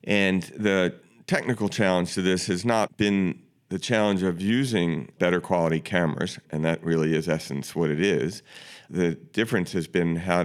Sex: male